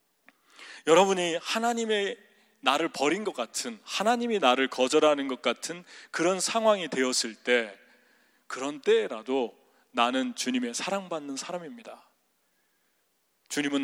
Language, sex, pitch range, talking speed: English, male, 130-215 Hz, 95 wpm